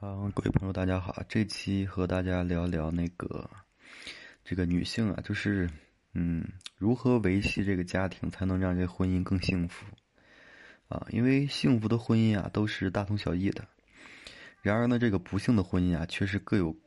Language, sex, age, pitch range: Chinese, male, 20-39, 90-110 Hz